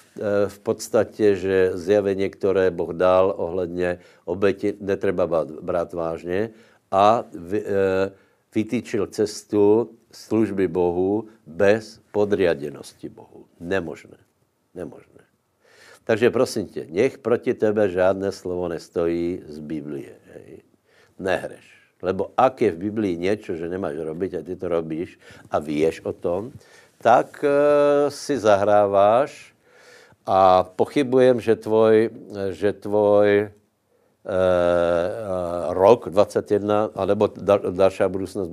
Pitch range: 90-105 Hz